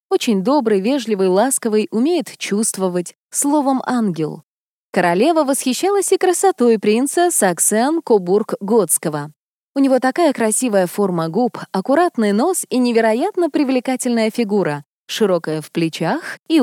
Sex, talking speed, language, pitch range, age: female, 110 wpm, Russian, 200-285 Hz, 20-39